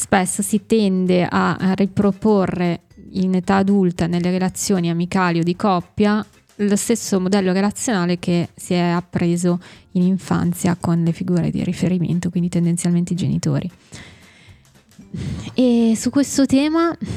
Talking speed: 130 wpm